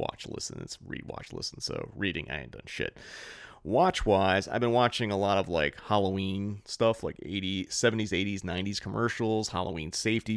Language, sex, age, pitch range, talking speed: English, male, 30-49, 90-110 Hz, 180 wpm